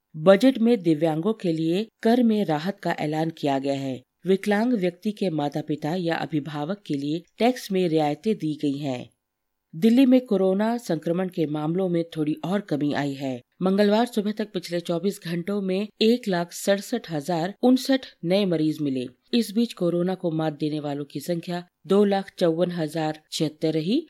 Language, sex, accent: Hindi, female, native